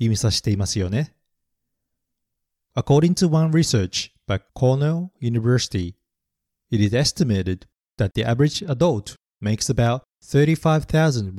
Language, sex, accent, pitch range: Japanese, male, native, 100-140 Hz